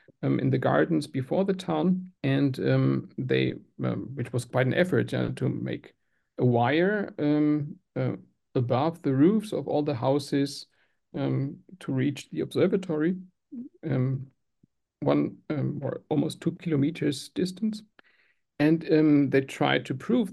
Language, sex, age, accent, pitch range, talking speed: English, male, 60-79, German, 130-175 Hz, 145 wpm